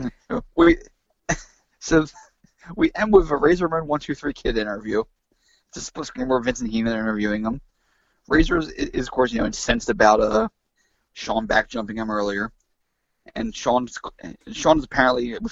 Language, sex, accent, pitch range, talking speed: English, male, American, 115-160 Hz, 160 wpm